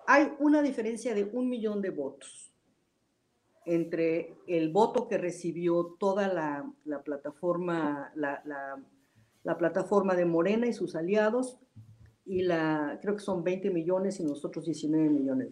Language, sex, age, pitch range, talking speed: Spanish, female, 50-69, 165-220 Hz, 130 wpm